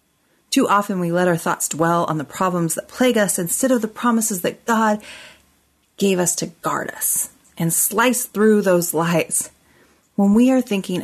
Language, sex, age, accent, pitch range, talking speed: English, female, 30-49, American, 160-210 Hz, 180 wpm